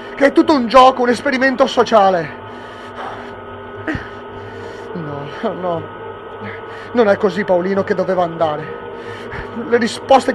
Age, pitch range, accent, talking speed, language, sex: 30-49, 200-250 Hz, native, 105 wpm, Italian, male